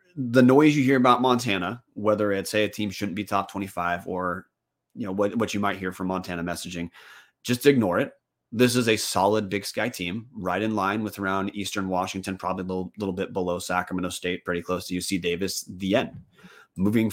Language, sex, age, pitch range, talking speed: English, male, 30-49, 95-130 Hz, 205 wpm